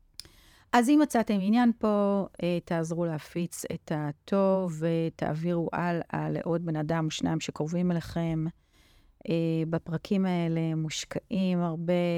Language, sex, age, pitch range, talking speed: Hebrew, female, 40-59, 165-190 Hz, 110 wpm